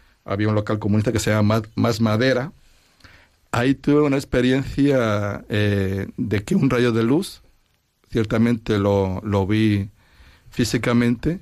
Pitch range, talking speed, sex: 100-125 Hz, 130 wpm, male